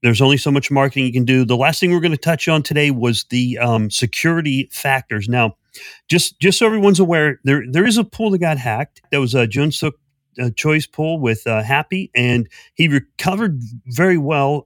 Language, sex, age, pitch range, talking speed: English, male, 40-59, 120-155 Hz, 210 wpm